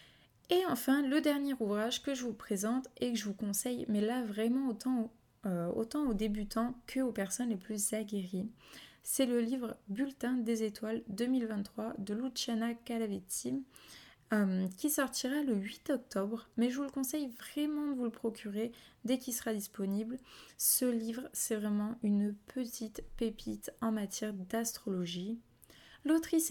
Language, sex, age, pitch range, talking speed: French, female, 20-39, 205-250 Hz, 150 wpm